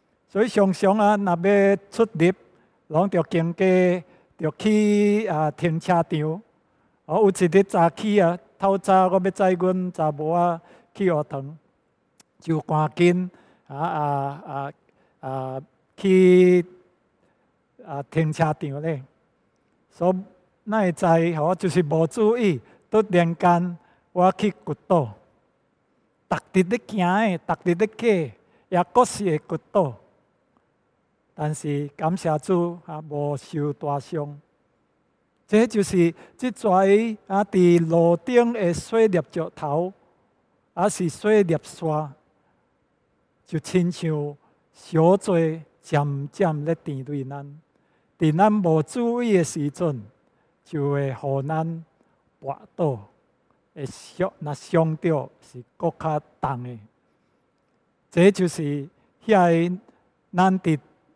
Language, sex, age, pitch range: English, male, 60-79, 155-190 Hz